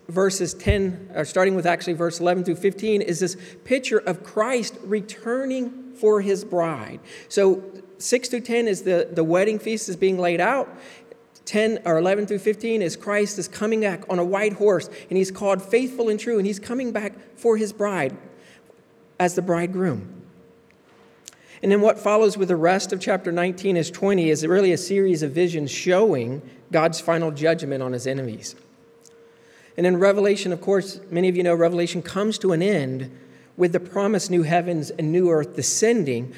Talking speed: 180 wpm